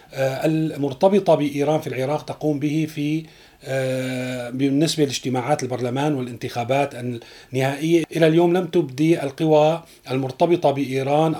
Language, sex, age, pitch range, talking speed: Arabic, male, 40-59, 130-155 Hz, 100 wpm